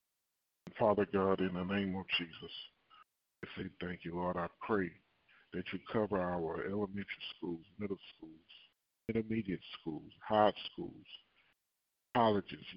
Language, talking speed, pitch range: English, 125 wpm, 90-110 Hz